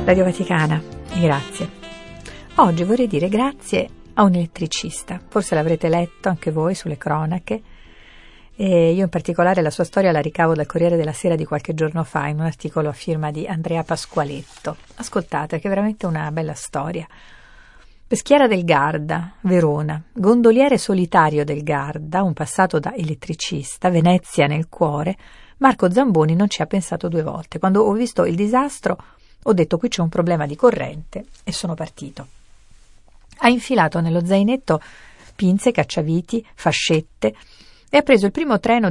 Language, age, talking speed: Italian, 50-69, 155 wpm